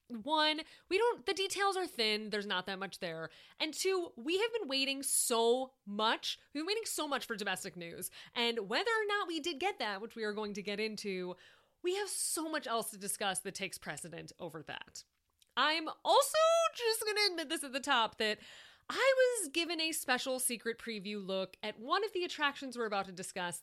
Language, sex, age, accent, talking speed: English, female, 30-49, American, 210 wpm